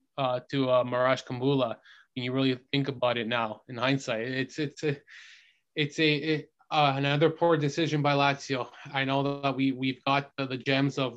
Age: 20-39